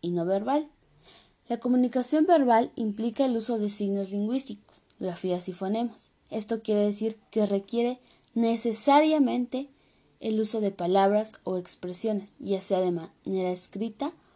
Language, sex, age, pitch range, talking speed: Spanish, female, 20-39, 195-240 Hz, 135 wpm